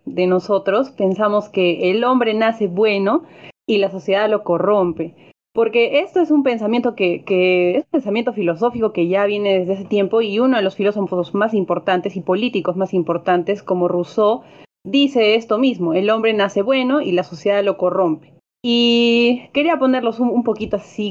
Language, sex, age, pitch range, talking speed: Spanish, female, 30-49, 190-235 Hz, 175 wpm